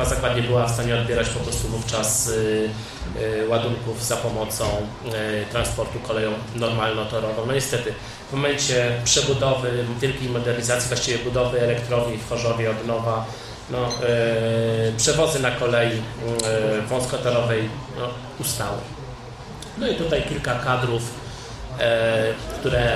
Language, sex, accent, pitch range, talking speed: Polish, male, native, 115-125 Hz, 105 wpm